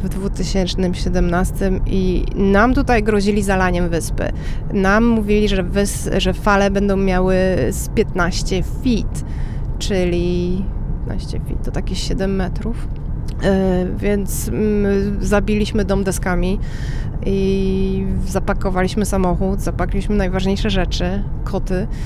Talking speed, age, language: 105 wpm, 30-49, Polish